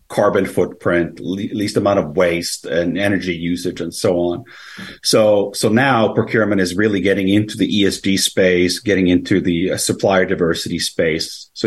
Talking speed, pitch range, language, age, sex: 165 wpm, 85-100 Hz, English, 40-59, male